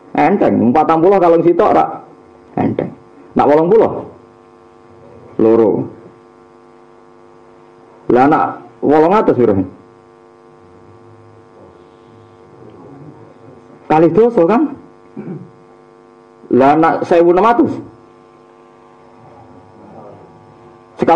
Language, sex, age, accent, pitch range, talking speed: Indonesian, male, 50-69, native, 100-170 Hz, 35 wpm